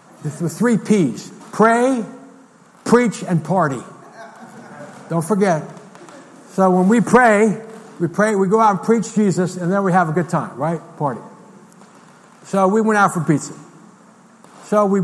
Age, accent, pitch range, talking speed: 60-79, American, 160-205 Hz, 150 wpm